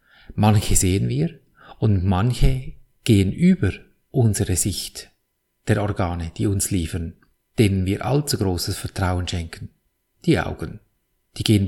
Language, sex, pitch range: German, male, 100-130 Hz